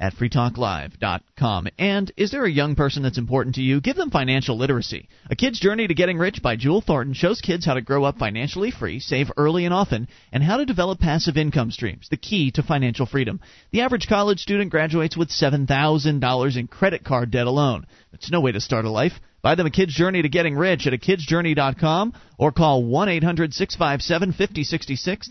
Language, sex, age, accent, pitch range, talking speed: English, male, 30-49, American, 140-185 Hz, 190 wpm